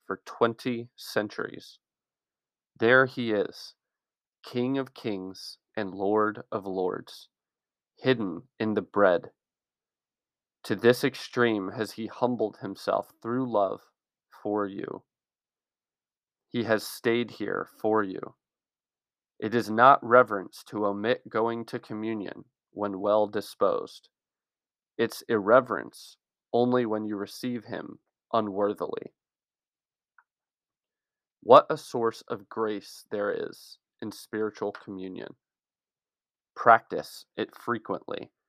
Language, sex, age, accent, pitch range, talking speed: English, male, 30-49, American, 105-120 Hz, 105 wpm